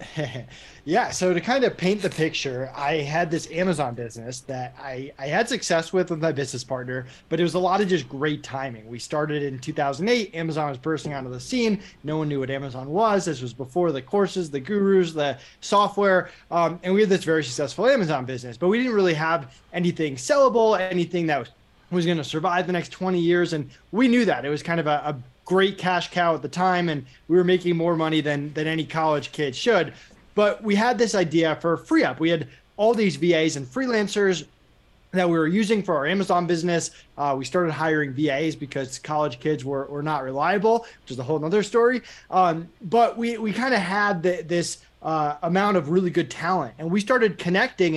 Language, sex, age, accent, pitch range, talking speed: English, male, 20-39, American, 150-195 Hz, 215 wpm